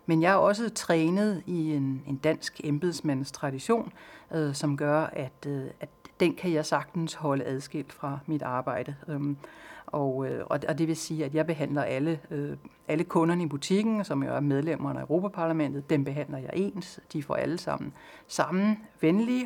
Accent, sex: native, female